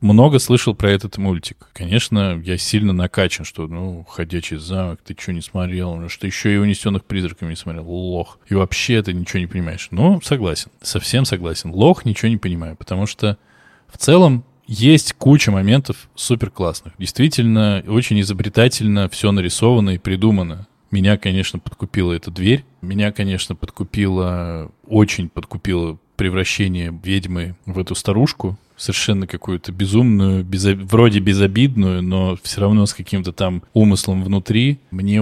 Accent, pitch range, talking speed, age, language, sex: native, 90-110 Hz, 145 wpm, 20-39, Russian, male